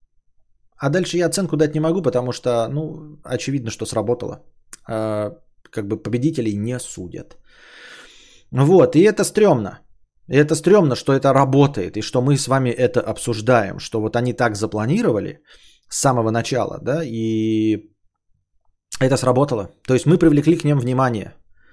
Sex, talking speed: male, 150 wpm